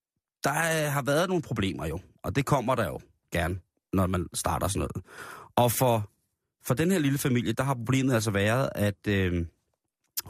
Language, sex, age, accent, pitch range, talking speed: Danish, male, 30-49, native, 100-120 Hz, 180 wpm